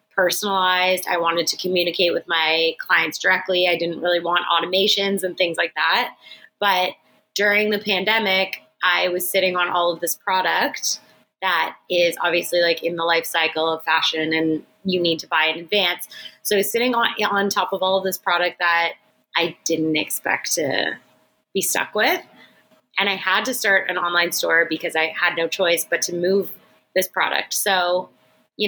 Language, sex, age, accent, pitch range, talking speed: English, female, 20-39, American, 170-200 Hz, 180 wpm